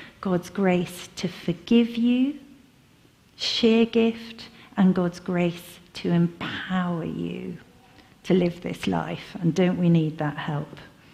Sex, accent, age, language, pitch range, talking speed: female, British, 50-69, English, 170-215 Hz, 125 wpm